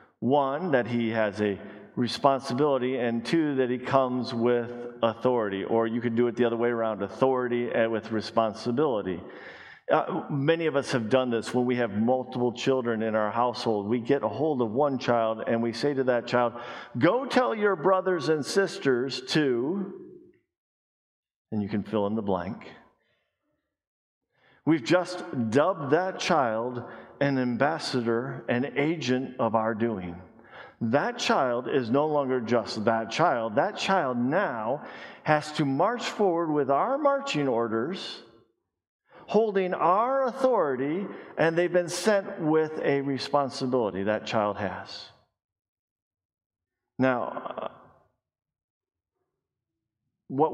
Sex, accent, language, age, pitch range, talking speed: male, American, English, 50-69, 115-145 Hz, 135 wpm